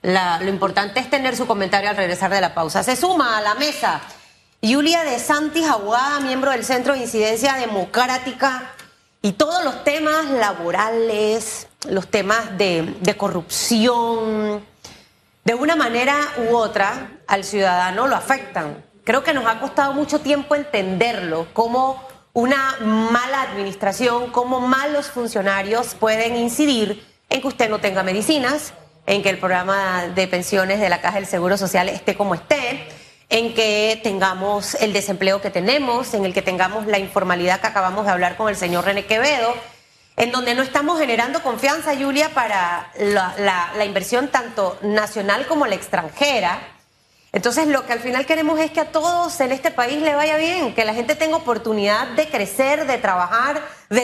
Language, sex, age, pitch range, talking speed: Spanish, female, 30-49, 200-270 Hz, 165 wpm